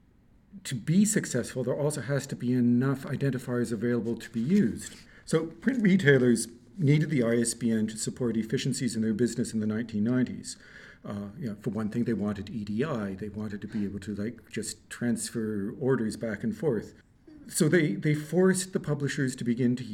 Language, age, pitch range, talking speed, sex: English, 50-69, 115-160 Hz, 180 wpm, male